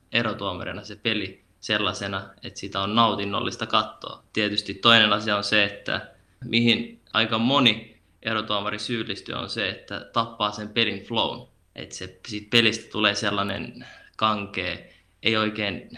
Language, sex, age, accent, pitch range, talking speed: Finnish, male, 20-39, native, 100-115 Hz, 135 wpm